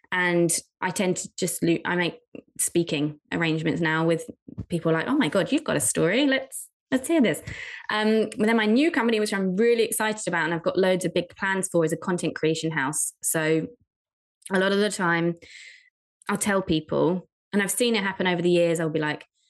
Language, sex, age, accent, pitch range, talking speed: English, female, 20-39, British, 165-210 Hz, 210 wpm